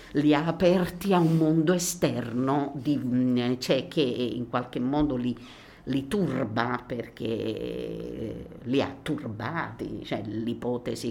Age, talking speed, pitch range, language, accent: 50-69, 120 wpm, 120-135 Hz, Italian, native